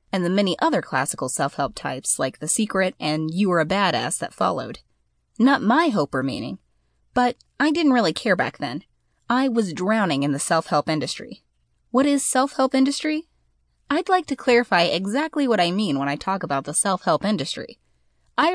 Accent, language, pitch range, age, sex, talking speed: American, English, 165-255 Hz, 20-39, female, 180 wpm